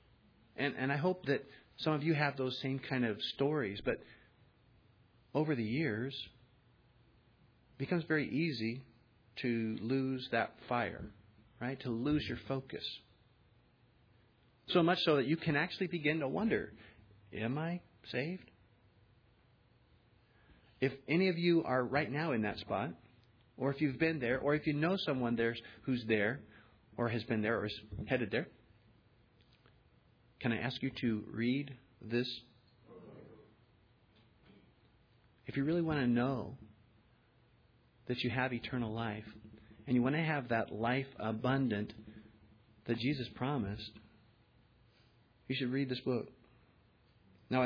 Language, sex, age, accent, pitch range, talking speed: English, male, 40-59, American, 110-135 Hz, 140 wpm